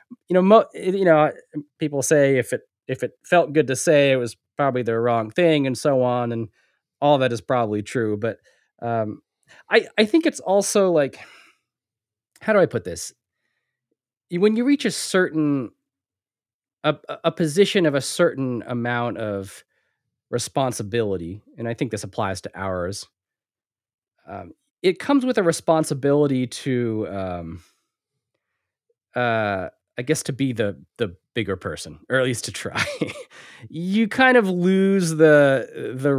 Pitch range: 115-165 Hz